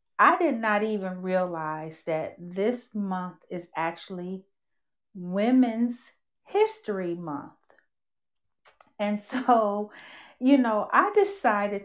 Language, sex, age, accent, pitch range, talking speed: English, female, 40-59, American, 185-225 Hz, 95 wpm